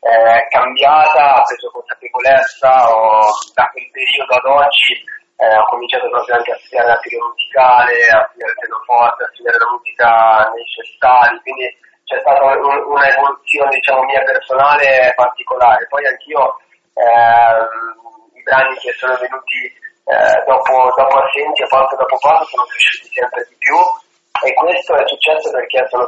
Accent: native